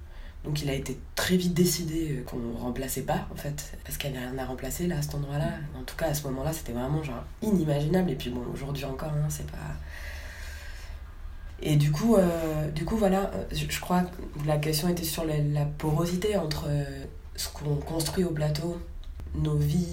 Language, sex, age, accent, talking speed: French, female, 20-39, French, 195 wpm